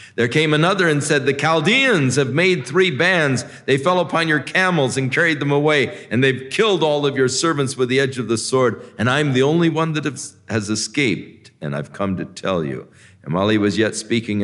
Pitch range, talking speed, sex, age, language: 95-135 Hz, 220 wpm, male, 50-69, English